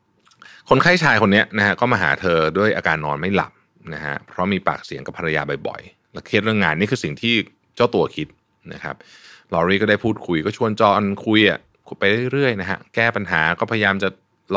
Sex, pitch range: male, 95-120 Hz